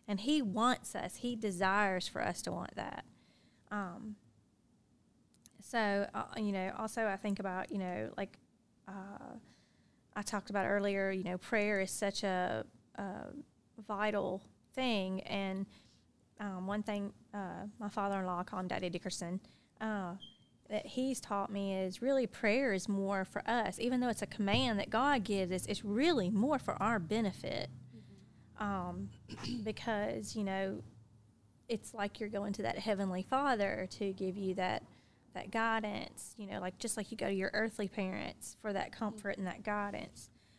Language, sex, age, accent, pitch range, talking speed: English, female, 30-49, American, 190-215 Hz, 160 wpm